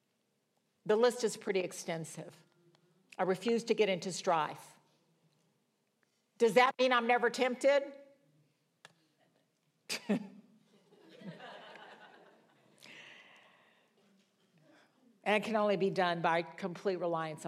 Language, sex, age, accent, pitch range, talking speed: English, female, 50-69, American, 190-240 Hz, 90 wpm